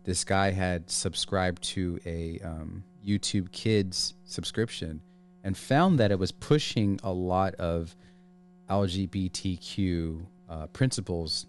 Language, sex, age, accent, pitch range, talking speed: English, male, 30-49, American, 90-120 Hz, 115 wpm